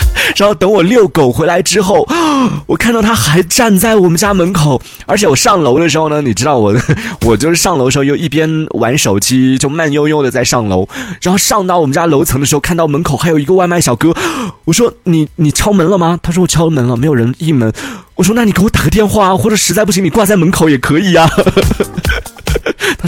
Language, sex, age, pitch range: Chinese, male, 20-39, 120-175 Hz